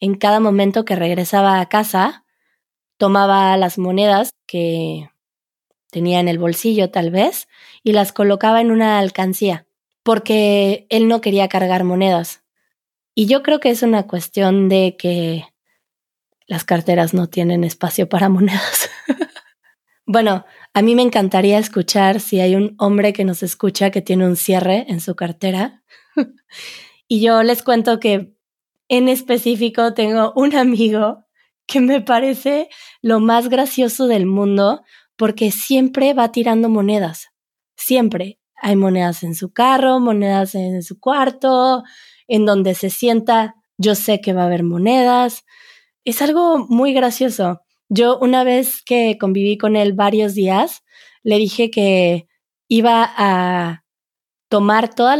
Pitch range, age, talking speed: 190-240 Hz, 20-39, 140 wpm